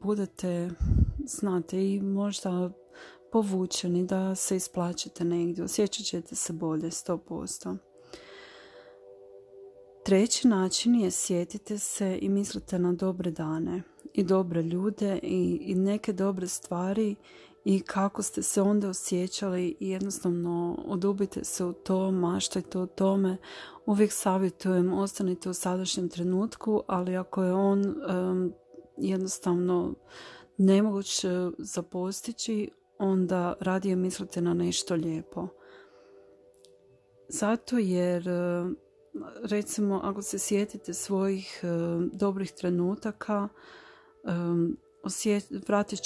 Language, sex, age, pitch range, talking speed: Croatian, female, 30-49, 175-200 Hz, 105 wpm